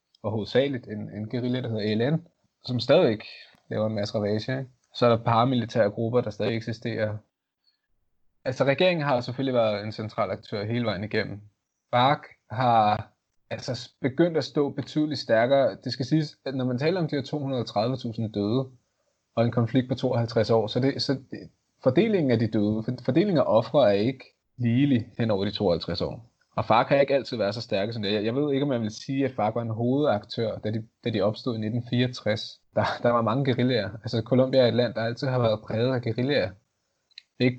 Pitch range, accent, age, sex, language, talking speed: 110-135 Hz, native, 20-39, male, Danish, 200 wpm